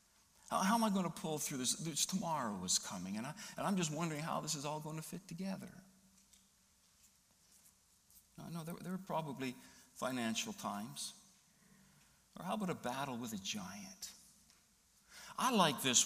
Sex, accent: male, American